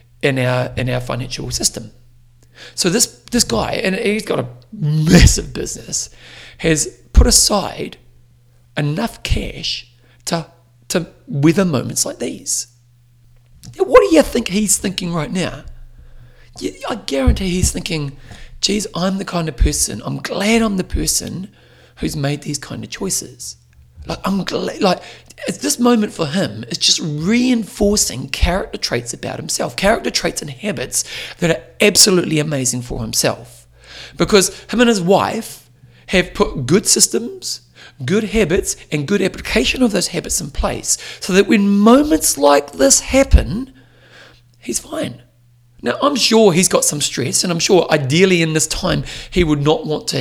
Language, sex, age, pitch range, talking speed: English, male, 40-59, 120-195 Hz, 155 wpm